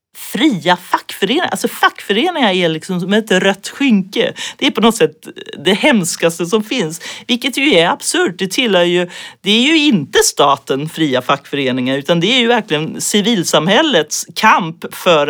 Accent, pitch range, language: native, 160-225 Hz, Swedish